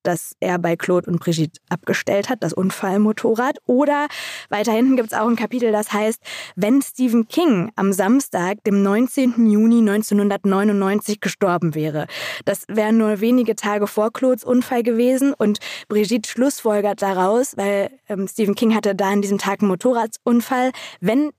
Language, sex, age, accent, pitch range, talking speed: German, female, 20-39, German, 195-245 Hz, 155 wpm